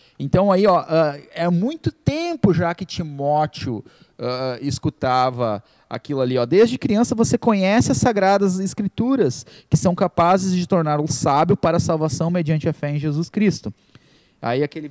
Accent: Brazilian